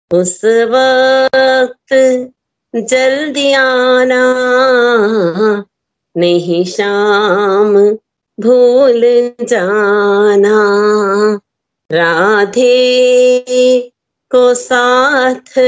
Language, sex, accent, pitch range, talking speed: Hindi, female, native, 200-255 Hz, 40 wpm